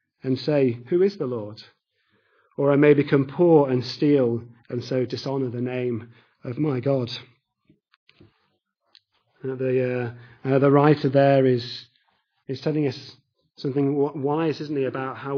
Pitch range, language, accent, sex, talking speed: 125-150 Hz, English, British, male, 150 wpm